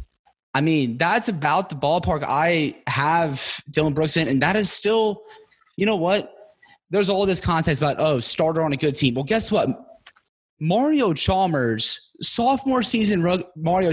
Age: 20-39